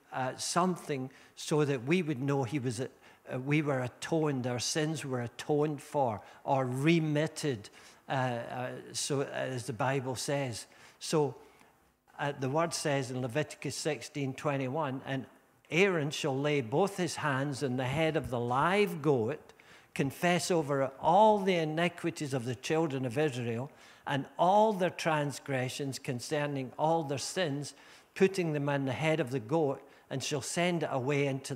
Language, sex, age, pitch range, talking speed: English, male, 60-79, 135-165 Hz, 160 wpm